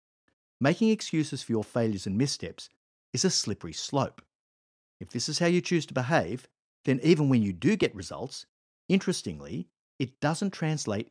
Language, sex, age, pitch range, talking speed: English, male, 50-69, 100-155 Hz, 160 wpm